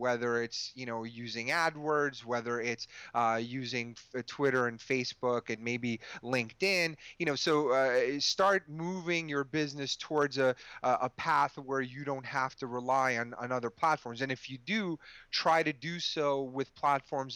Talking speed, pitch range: 170 wpm, 120-145 Hz